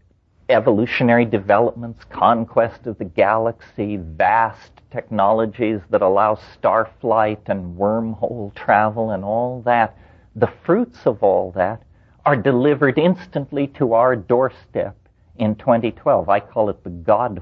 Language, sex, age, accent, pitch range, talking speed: English, male, 50-69, American, 90-115 Hz, 125 wpm